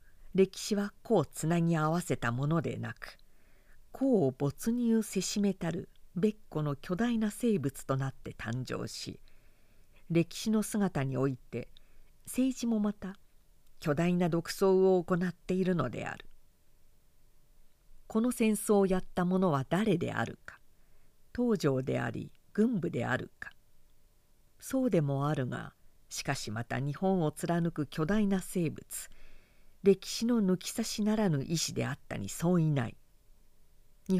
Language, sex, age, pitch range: Japanese, female, 50-69, 140-205 Hz